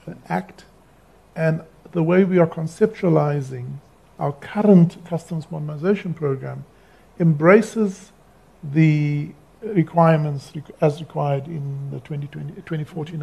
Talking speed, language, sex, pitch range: 90 wpm, English, male, 145-175 Hz